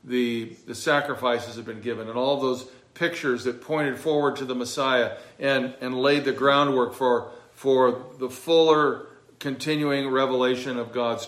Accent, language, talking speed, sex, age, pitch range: American, English, 155 wpm, male, 50-69, 115-140 Hz